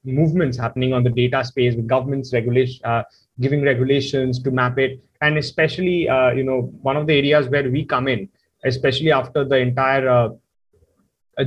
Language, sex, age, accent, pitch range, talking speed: English, male, 20-39, Indian, 125-145 Hz, 180 wpm